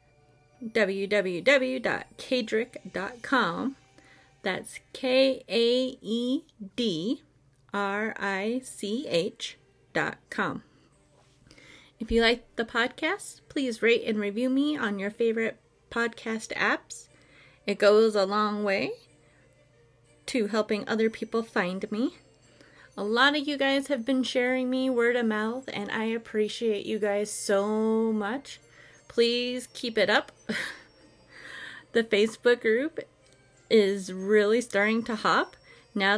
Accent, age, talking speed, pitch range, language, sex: American, 30-49, 105 wpm, 205-250 Hz, English, female